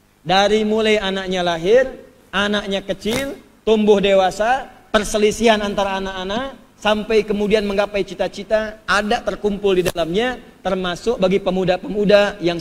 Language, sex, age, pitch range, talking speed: Indonesian, male, 40-59, 185-245 Hz, 110 wpm